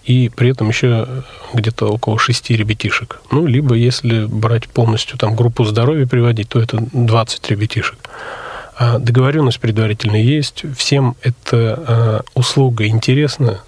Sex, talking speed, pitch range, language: male, 125 wpm, 110-125 Hz, Russian